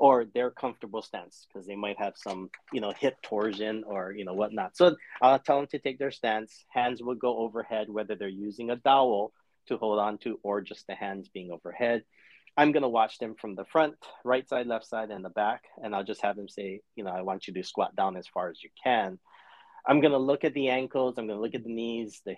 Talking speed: 250 wpm